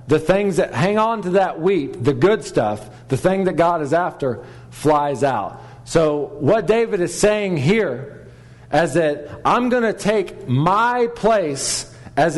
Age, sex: 40-59, male